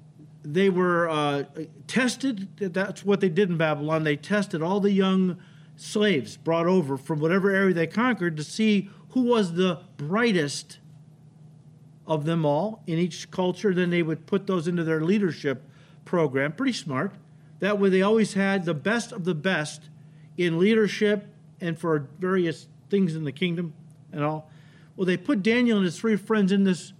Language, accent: English, American